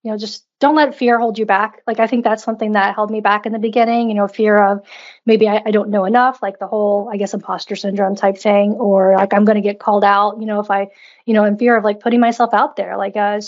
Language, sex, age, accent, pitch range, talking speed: English, female, 20-39, American, 195-225 Hz, 285 wpm